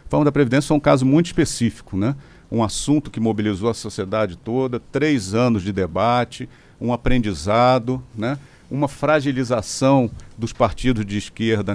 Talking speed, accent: 150 wpm, Brazilian